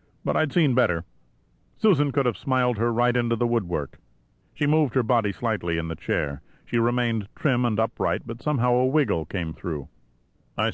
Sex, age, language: male, 50-69, English